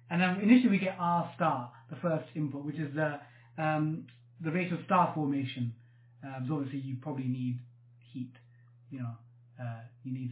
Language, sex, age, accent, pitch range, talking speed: English, male, 30-49, British, 130-170 Hz, 175 wpm